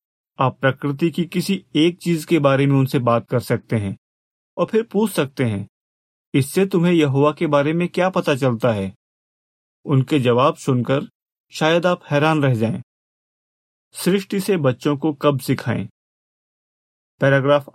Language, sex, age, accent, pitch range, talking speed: Hindi, male, 40-59, native, 130-160 Hz, 150 wpm